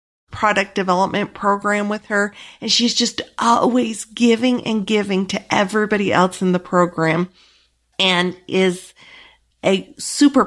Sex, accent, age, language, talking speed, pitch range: female, American, 50-69, English, 125 wpm, 185-225 Hz